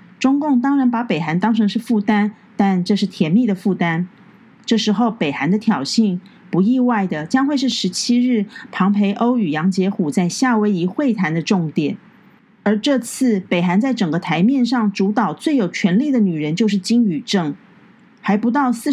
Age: 40-59